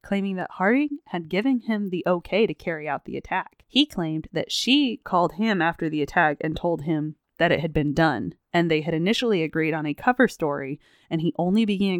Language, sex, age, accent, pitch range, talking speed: English, female, 20-39, American, 155-200 Hz, 215 wpm